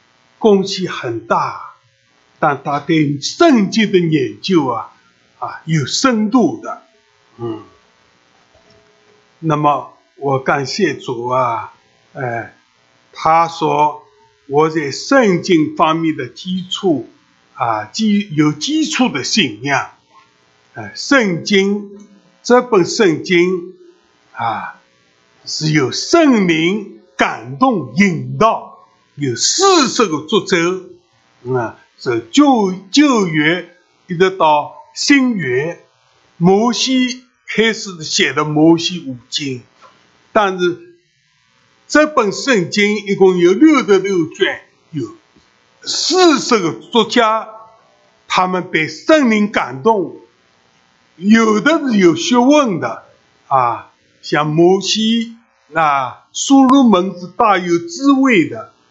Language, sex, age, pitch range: English, male, 60-79, 140-225 Hz